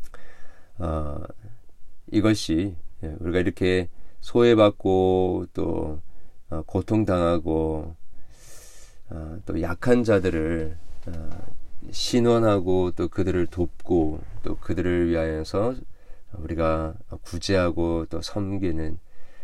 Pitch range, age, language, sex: 80-100 Hz, 40-59, Korean, male